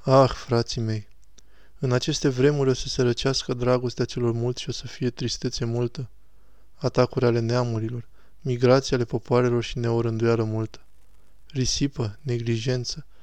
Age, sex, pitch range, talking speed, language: 20-39, male, 110-130 Hz, 135 wpm, Romanian